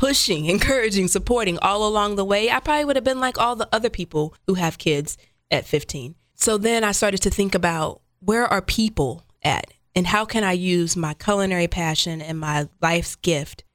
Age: 20-39